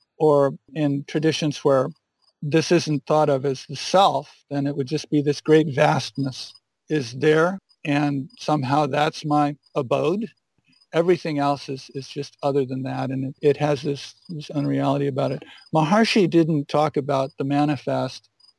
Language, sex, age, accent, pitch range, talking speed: English, male, 50-69, American, 140-160 Hz, 160 wpm